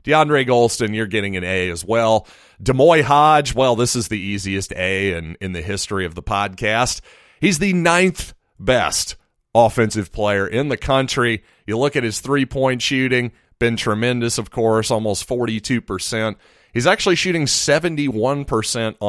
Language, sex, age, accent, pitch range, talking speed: English, male, 40-59, American, 105-135 Hz, 150 wpm